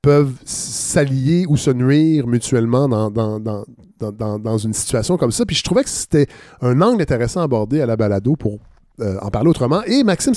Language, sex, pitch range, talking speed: French, male, 115-155 Hz, 205 wpm